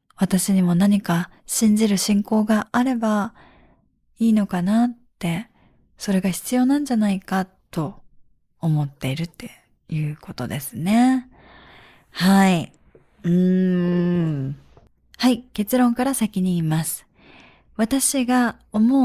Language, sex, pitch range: Japanese, female, 170-240 Hz